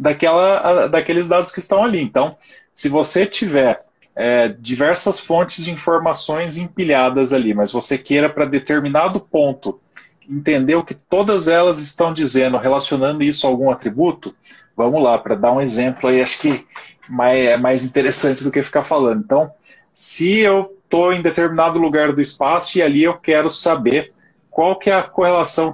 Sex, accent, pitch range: male, Brazilian, 140-185 Hz